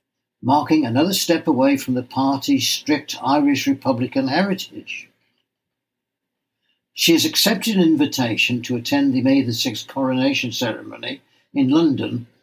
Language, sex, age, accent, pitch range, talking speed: English, male, 60-79, British, 130-190 Hz, 125 wpm